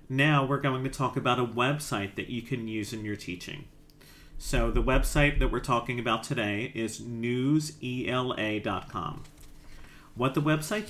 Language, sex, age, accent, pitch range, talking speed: English, male, 40-59, American, 115-140 Hz, 155 wpm